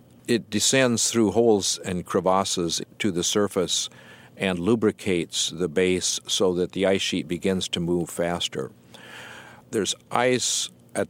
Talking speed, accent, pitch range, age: 135 wpm, American, 85-105 Hz, 50-69